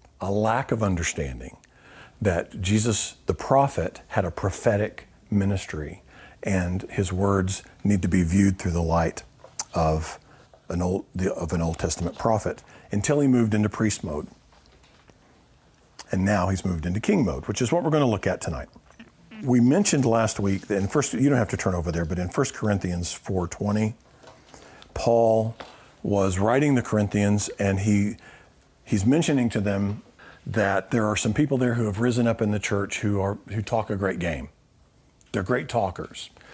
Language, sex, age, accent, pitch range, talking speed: English, male, 50-69, American, 95-120 Hz, 175 wpm